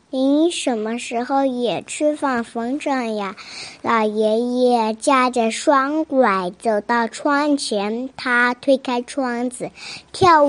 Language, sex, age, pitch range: Chinese, male, 20-39, 245-315 Hz